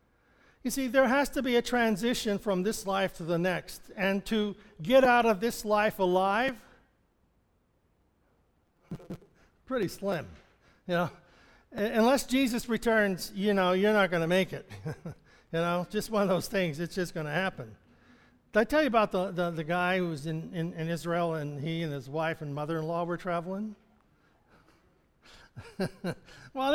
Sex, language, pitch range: male, English, 165-210 Hz